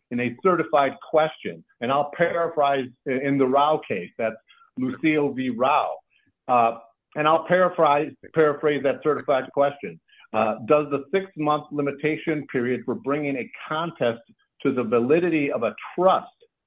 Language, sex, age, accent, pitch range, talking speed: English, male, 50-69, American, 125-160 Hz, 140 wpm